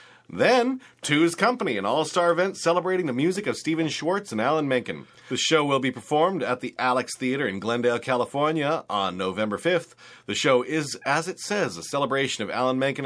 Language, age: English, 30-49